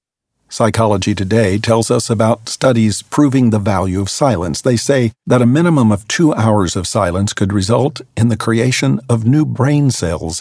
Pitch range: 100-120 Hz